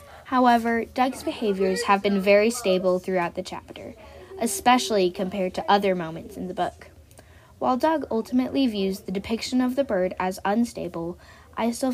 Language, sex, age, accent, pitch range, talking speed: English, female, 10-29, American, 180-230 Hz, 155 wpm